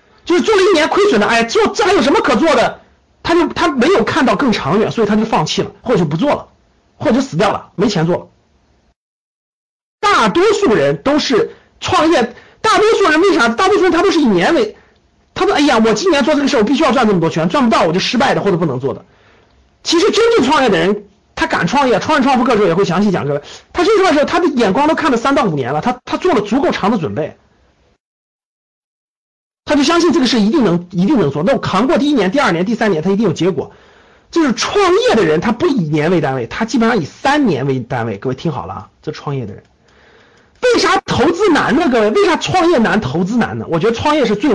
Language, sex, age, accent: Chinese, male, 50-69, native